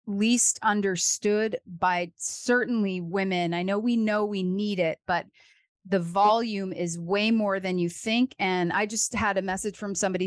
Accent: American